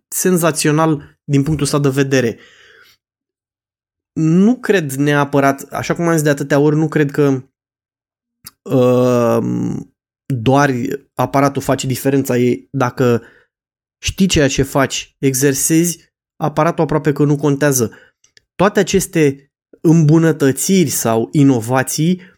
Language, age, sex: Romanian, 20-39, male